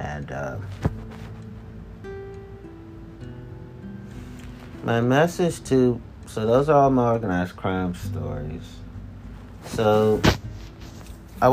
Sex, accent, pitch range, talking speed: male, American, 90-105 Hz, 80 wpm